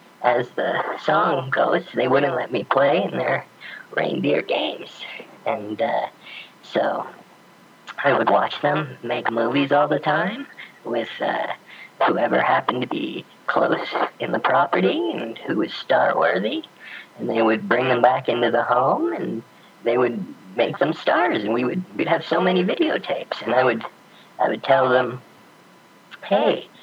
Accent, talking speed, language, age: American, 155 wpm, English, 40-59